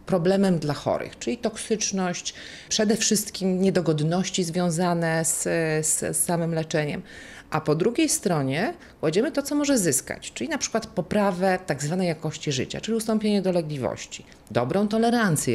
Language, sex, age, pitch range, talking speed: Polish, female, 40-59, 170-230 Hz, 140 wpm